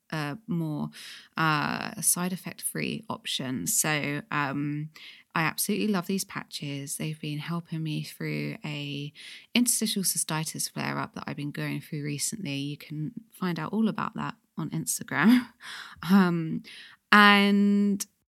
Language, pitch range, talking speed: English, 165-220 Hz, 130 wpm